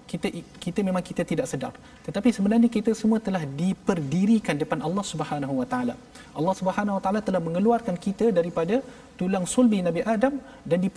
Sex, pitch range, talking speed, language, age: male, 170-235 Hz, 170 wpm, Malayalam, 30-49